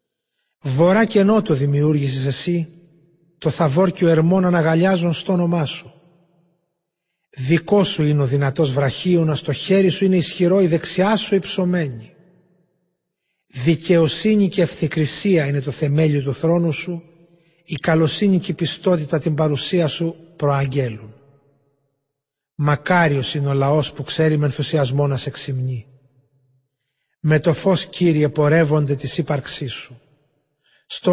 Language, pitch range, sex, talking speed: Greek, 140-175 Hz, male, 130 wpm